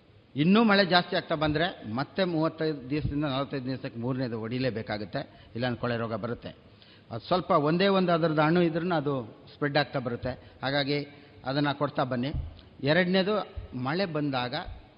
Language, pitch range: Kannada, 125-165 Hz